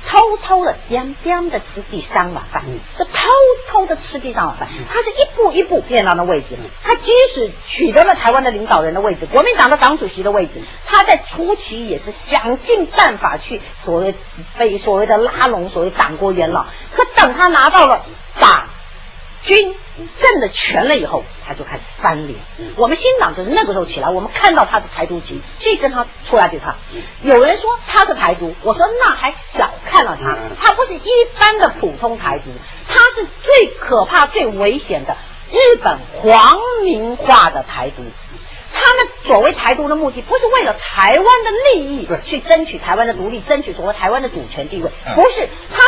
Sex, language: female, Chinese